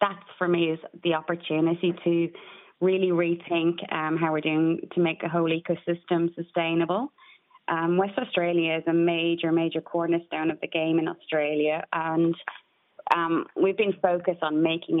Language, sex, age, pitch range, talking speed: English, female, 20-39, 155-175 Hz, 155 wpm